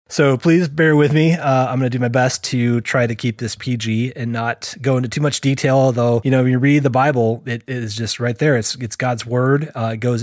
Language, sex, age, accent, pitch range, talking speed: English, male, 30-49, American, 115-140 Hz, 270 wpm